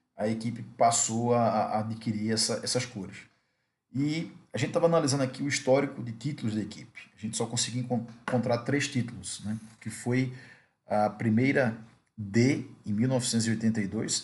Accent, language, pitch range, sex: Brazilian, Portuguese, 110-125 Hz, male